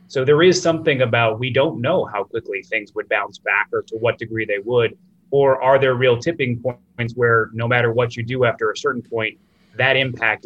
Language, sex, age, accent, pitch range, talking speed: English, male, 30-49, American, 110-145 Hz, 220 wpm